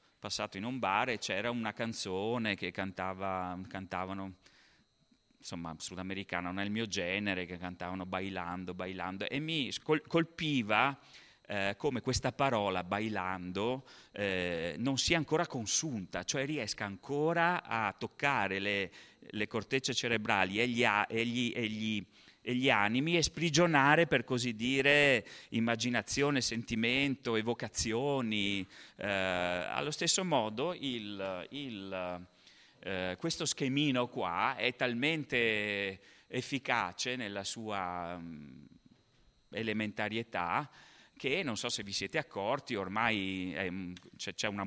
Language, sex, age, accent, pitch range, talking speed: Italian, male, 30-49, native, 95-125 Hz, 120 wpm